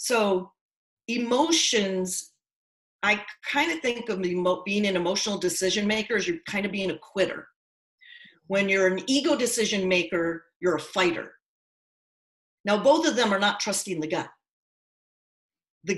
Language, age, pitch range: English, 40-59, 185-250 Hz